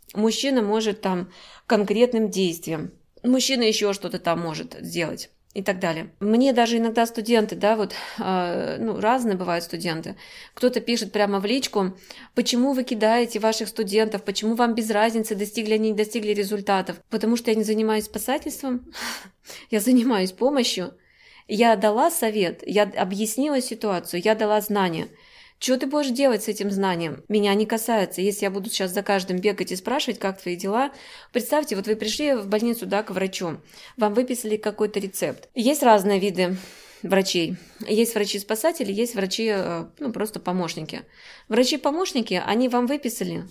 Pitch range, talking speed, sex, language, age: 195-240 Hz, 150 wpm, female, Russian, 20-39